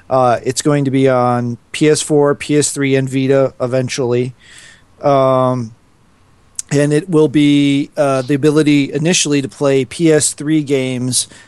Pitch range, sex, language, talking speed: 120-145 Hz, male, English, 125 wpm